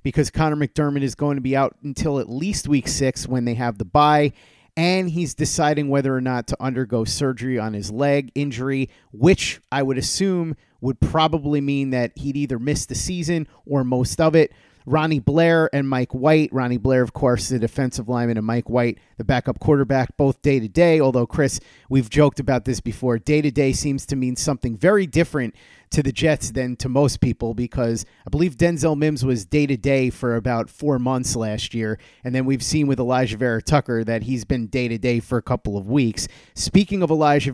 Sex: male